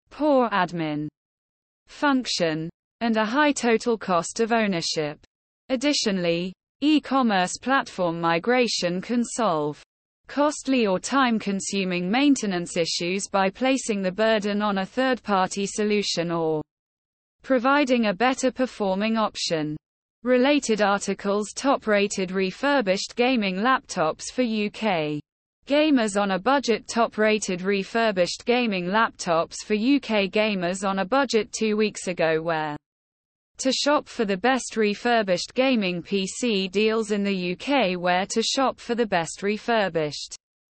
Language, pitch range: English, 185-240 Hz